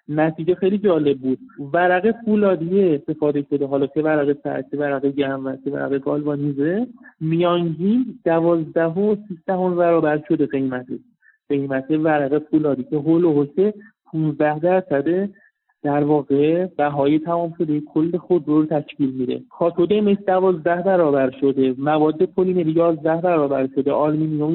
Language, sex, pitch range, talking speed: Persian, male, 145-175 Hz, 140 wpm